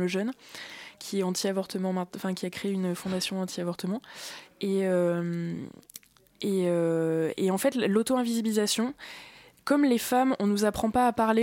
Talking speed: 150 wpm